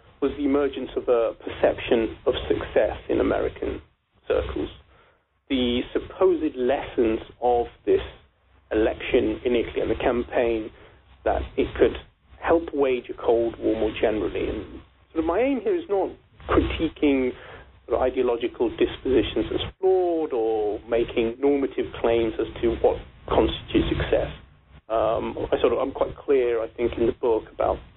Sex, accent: male, British